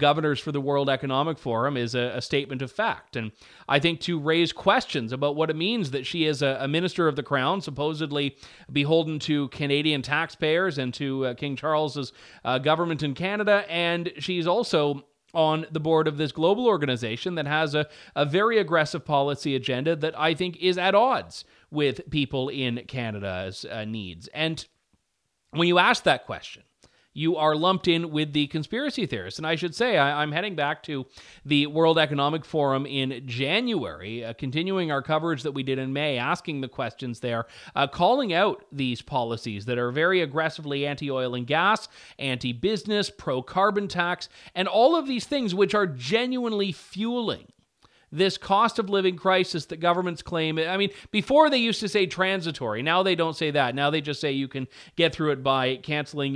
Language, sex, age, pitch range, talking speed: English, male, 30-49, 135-180 Hz, 185 wpm